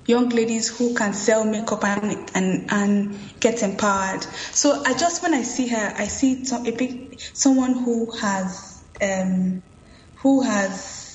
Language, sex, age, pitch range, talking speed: English, female, 10-29, 210-255 Hz, 155 wpm